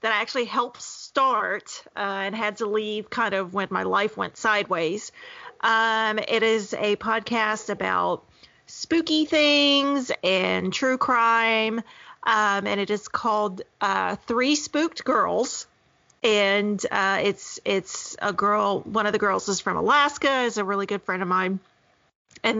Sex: female